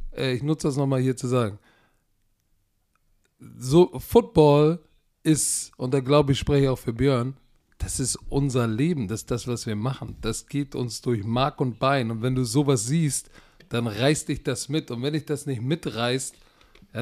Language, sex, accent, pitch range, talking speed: German, male, German, 125-155 Hz, 185 wpm